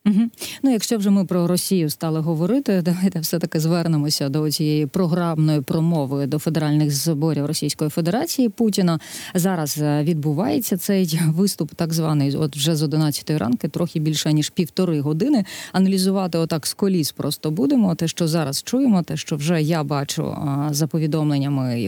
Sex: female